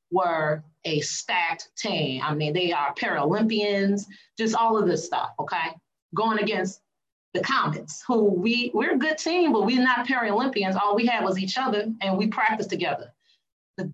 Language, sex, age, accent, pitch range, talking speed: English, female, 30-49, American, 190-250 Hz, 175 wpm